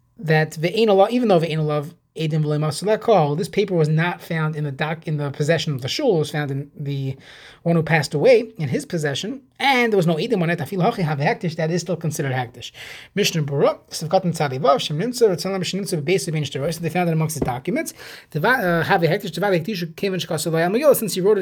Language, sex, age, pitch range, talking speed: English, male, 20-39, 150-190 Hz, 140 wpm